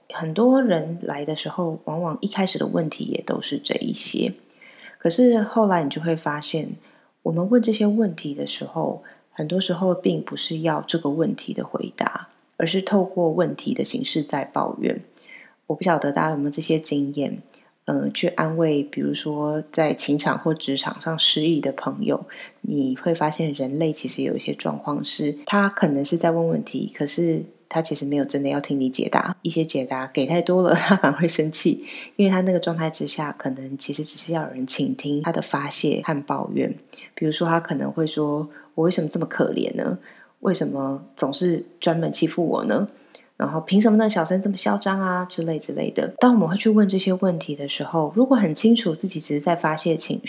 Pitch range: 150-185 Hz